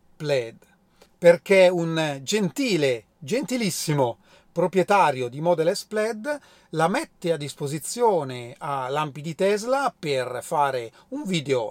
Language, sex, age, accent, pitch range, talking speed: Italian, male, 40-59, native, 150-210 Hz, 110 wpm